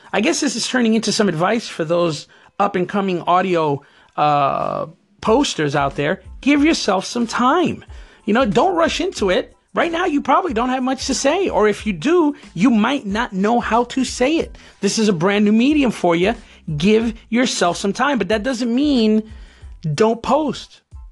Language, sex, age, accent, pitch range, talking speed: English, male, 30-49, American, 190-245 Hz, 185 wpm